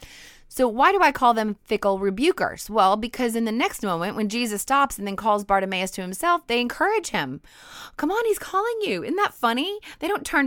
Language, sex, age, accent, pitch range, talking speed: English, female, 30-49, American, 175-255 Hz, 210 wpm